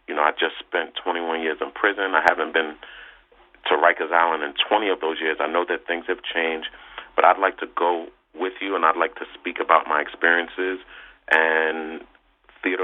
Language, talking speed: English, 200 wpm